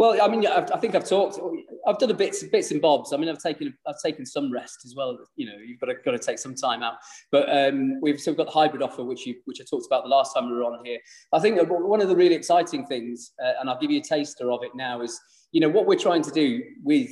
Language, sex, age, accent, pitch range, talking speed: English, male, 30-49, British, 125-195 Hz, 300 wpm